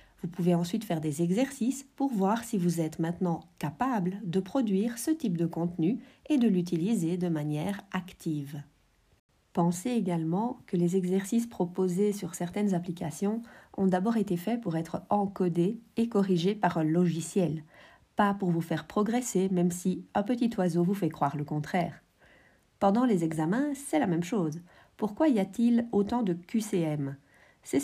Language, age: French, 50-69